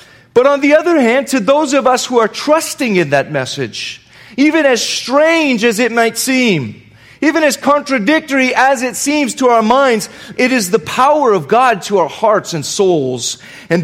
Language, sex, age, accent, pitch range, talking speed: English, male, 30-49, American, 155-235 Hz, 185 wpm